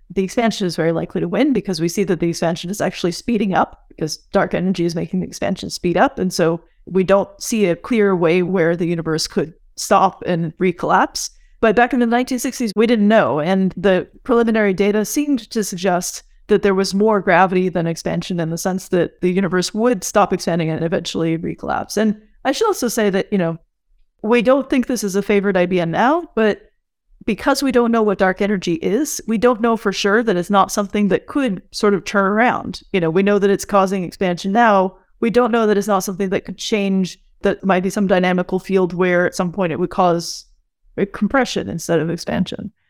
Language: English